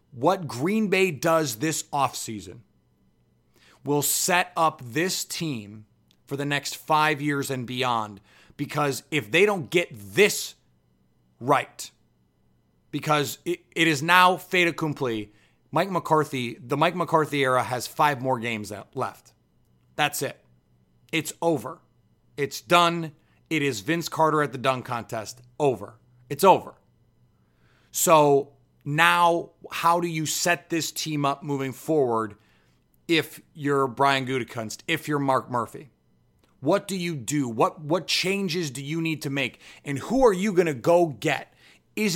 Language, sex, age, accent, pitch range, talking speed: English, male, 30-49, American, 120-165 Hz, 140 wpm